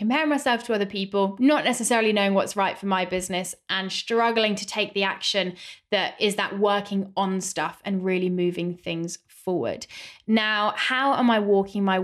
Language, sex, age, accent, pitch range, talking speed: English, female, 20-39, British, 190-235 Hz, 180 wpm